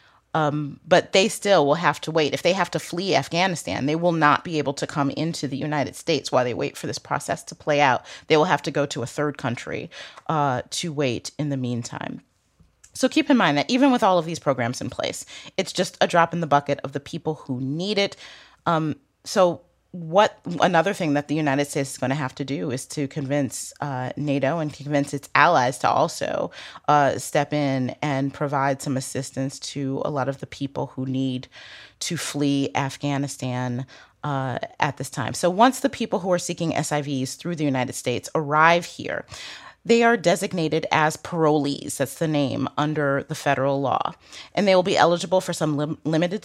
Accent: American